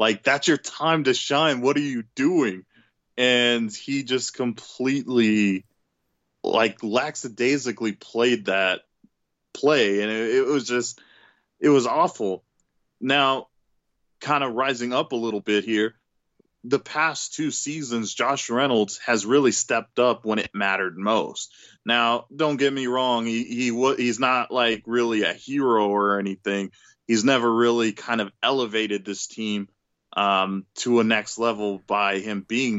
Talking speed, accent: 150 wpm, American